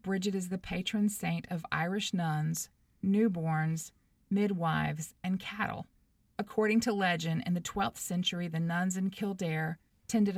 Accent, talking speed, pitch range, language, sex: American, 140 wpm, 155-185 Hz, English, female